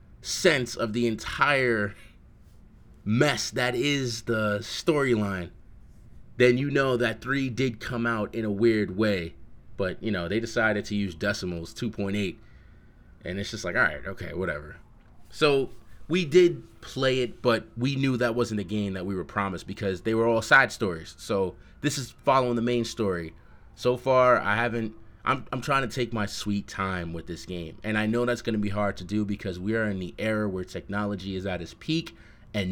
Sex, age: male, 20-39